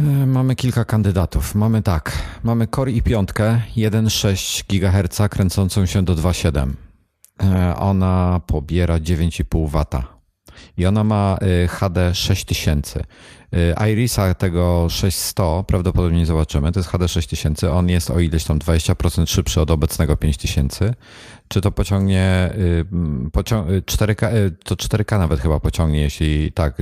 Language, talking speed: Polish, 120 wpm